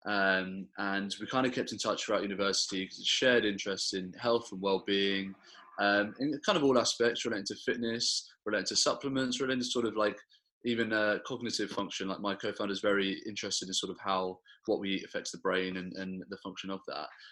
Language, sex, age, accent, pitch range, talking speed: English, male, 20-39, British, 95-115 Hz, 210 wpm